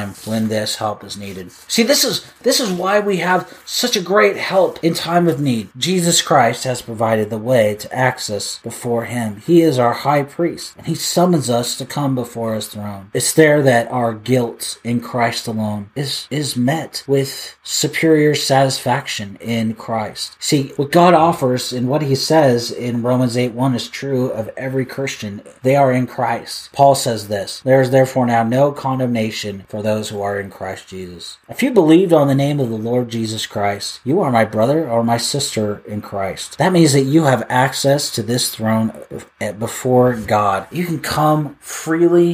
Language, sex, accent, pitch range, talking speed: English, male, American, 115-155 Hz, 190 wpm